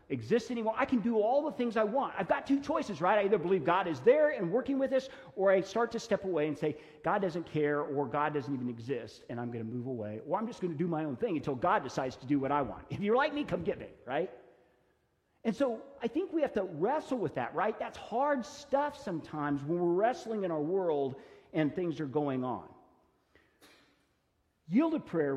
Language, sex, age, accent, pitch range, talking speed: English, male, 50-69, American, 140-185 Hz, 235 wpm